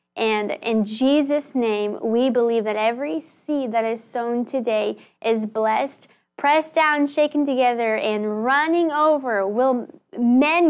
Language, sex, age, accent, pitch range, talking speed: English, female, 10-29, American, 225-265 Hz, 135 wpm